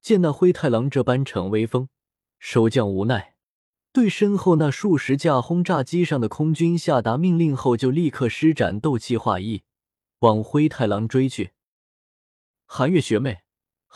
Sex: male